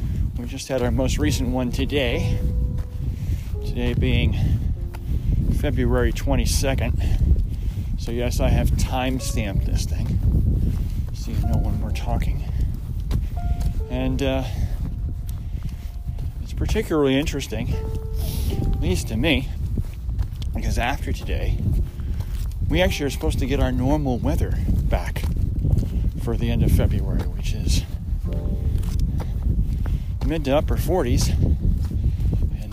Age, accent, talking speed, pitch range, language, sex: 40-59, American, 110 wpm, 85-115 Hz, English, male